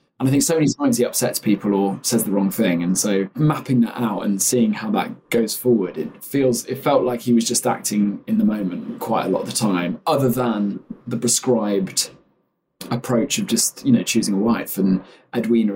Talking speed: 215 wpm